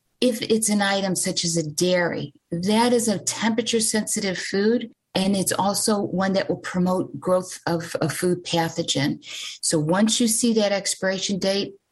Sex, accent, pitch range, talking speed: female, American, 165-205 Hz, 165 wpm